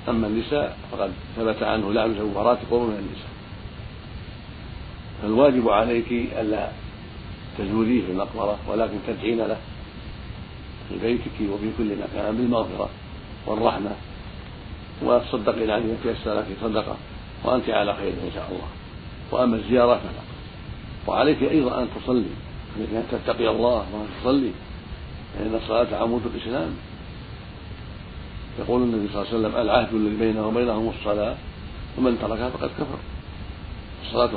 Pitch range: 105-115 Hz